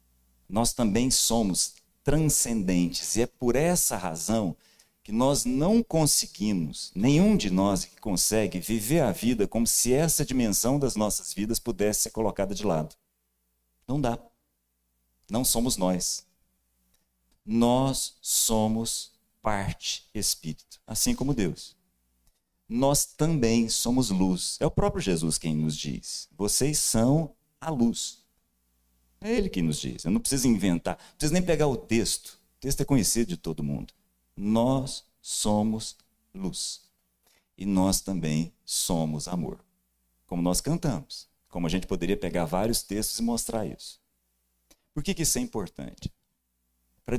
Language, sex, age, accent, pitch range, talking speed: Portuguese, male, 50-69, Brazilian, 80-120 Hz, 140 wpm